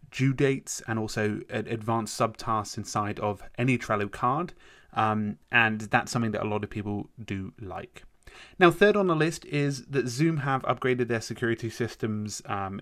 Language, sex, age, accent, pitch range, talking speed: English, male, 30-49, British, 110-135 Hz, 170 wpm